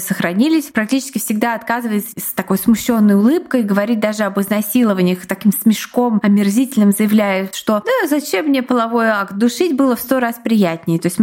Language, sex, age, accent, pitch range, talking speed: Russian, female, 20-39, native, 195-250 Hz, 160 wpm